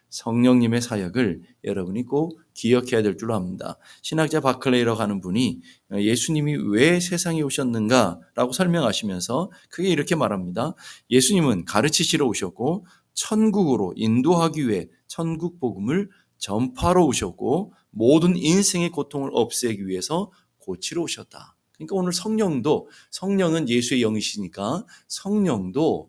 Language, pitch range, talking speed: English, 110-170 Hz, 100 wpm